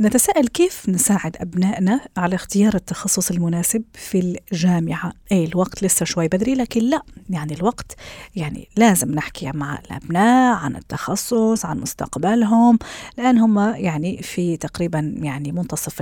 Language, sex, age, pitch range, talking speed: Arabic, female, 40-59, 170-225 Hz, 130 wpm